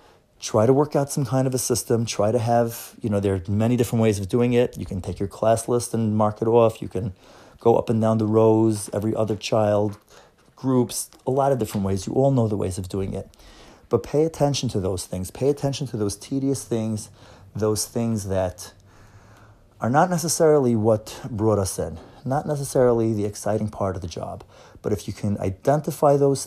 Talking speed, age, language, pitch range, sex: 210 wpm, 30-49, English, 100-120 Hz, male